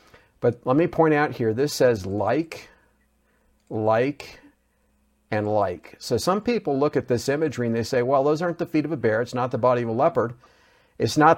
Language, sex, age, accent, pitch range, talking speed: English, male, 50-69, American, 105-140 Hz, 205 wpm